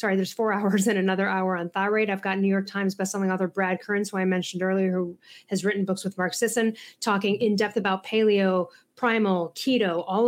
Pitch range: 190-235 Hz